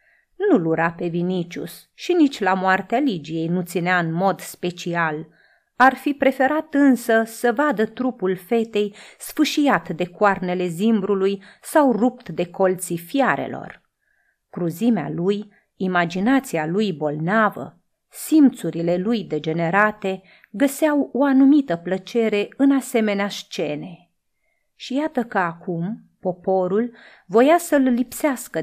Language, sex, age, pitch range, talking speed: Romanian, female, 30-49, 175-250 Hz, 115 wpm